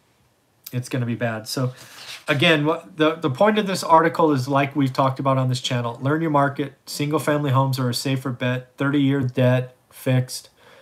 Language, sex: English, male